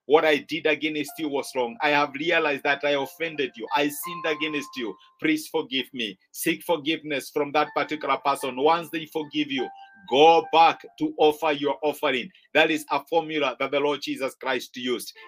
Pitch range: 150-190 Hz